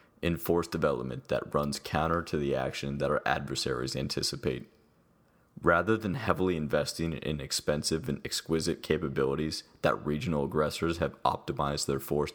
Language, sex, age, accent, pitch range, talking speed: English, male, 20-39, American, 70-90 Hz, 140 wpm